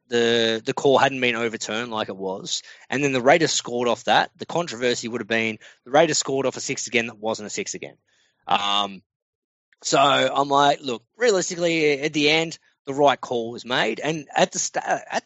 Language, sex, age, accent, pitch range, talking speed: English, male, 20-39, Australian, 115-160 Hz, 205 wpm